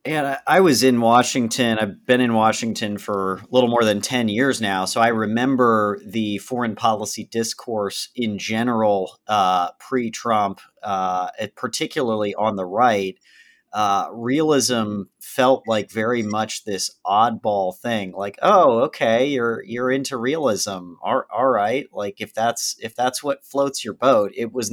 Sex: male